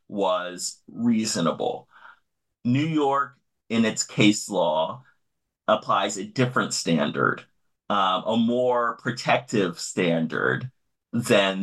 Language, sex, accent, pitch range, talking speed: English, male, American, 95-120 Hz, 95 wpm